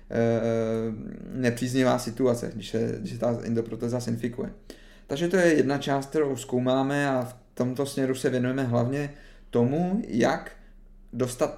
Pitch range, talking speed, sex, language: 115-130 Hz, 130 wpm, male, Czech